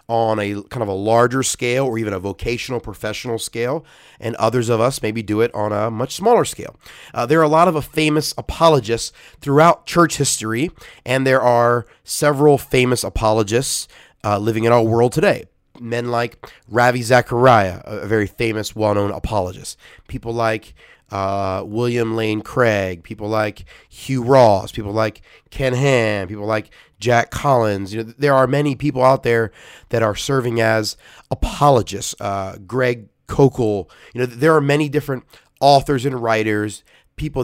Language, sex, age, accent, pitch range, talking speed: English, male, 30-49, American, 110-130 Hz, 160 wpm